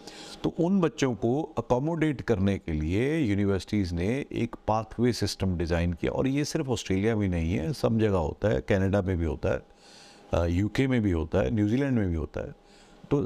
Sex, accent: male, native